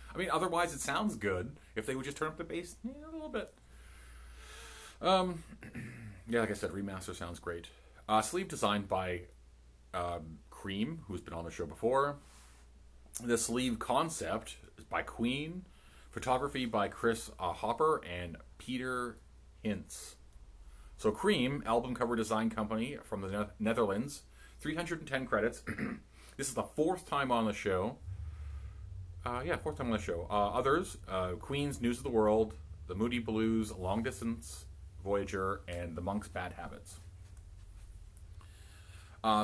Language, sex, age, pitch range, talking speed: English, male, 30-49, 85-115 Hz, 150 wpm